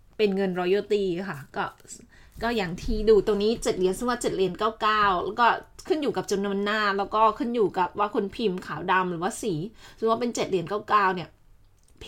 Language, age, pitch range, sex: Thai, 20-39, 190-225 Hz, female